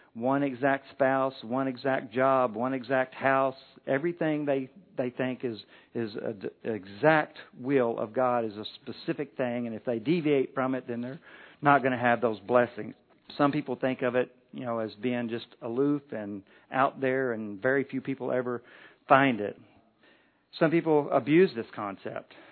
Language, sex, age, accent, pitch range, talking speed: English, male, 50-69, American, 115-135 Hz, 175 wpm